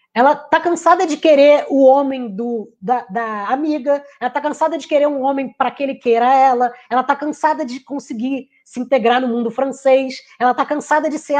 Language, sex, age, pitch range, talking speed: Portuguese, female, 20-39, 225-285 Hz, 195 wpm